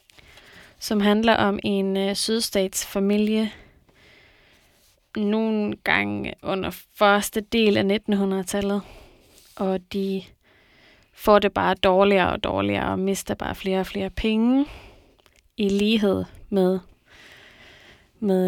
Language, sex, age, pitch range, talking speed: Danish, female, 20-39, 200-225 Hz, 105 wpm